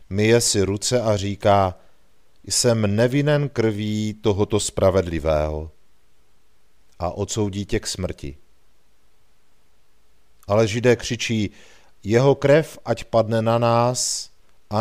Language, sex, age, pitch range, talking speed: Czech, male, 40-59, 95-115 Hz, 100 wpm